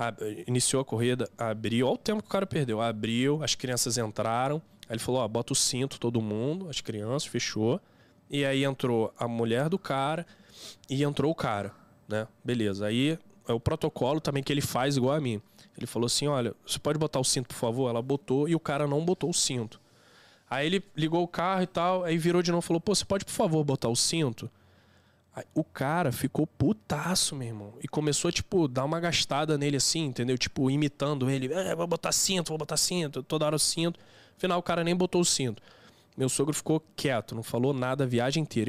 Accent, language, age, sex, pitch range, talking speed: Brazilian, Portuguese, 10-29, male, 120-155 Hz, 215 wpm